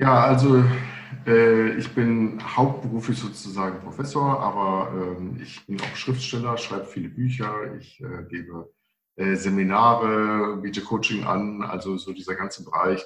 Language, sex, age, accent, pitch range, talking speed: German, male, 50-69, German, 100-125 Hz, 140 wpm